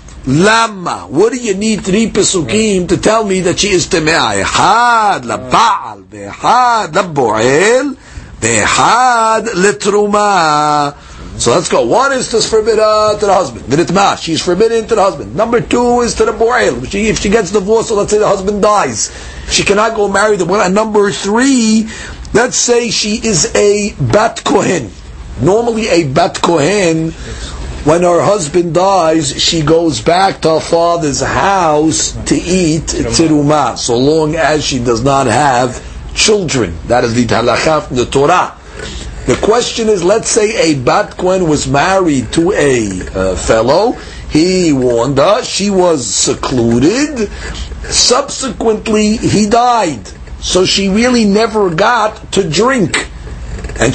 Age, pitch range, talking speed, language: 50-69, 140-215 Hz, 135 wpm, English